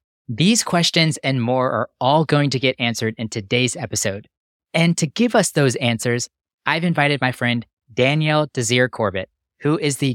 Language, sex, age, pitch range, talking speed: English, male, 20-39, 115-150 Hz, 170 wpm